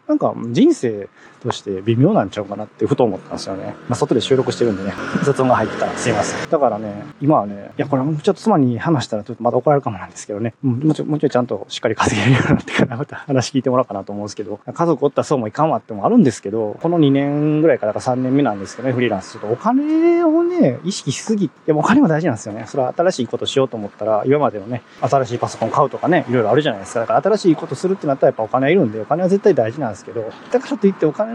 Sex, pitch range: male, 120-170 Hz